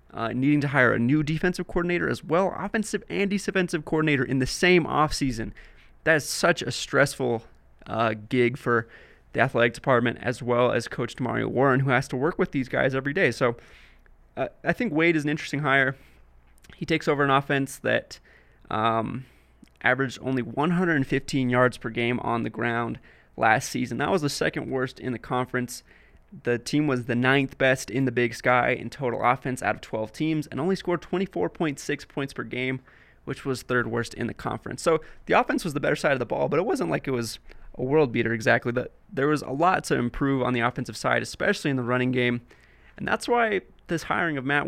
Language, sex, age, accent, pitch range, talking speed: English, male, 20-39, American, 120-150 Hz, 205 wpm